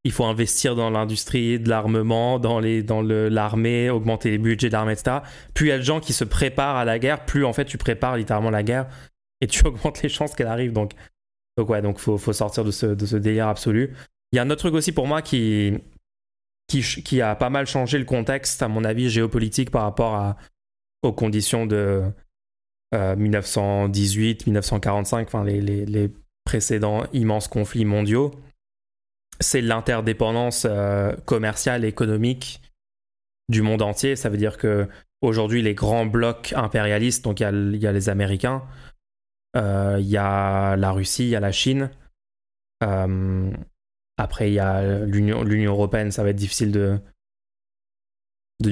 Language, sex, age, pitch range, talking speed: French, male, 20-39, 105-125 Hz, 175 wpm